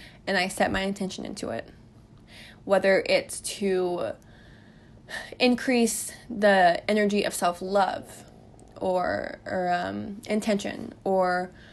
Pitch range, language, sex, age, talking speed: 185-225 Hz, English, female, 20-39, 100 wpm